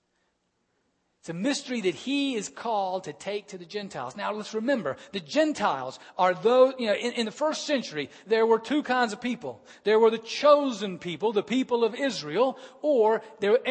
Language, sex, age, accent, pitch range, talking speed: English, male, 40-59, American, 185-250 Hz, 190 wpm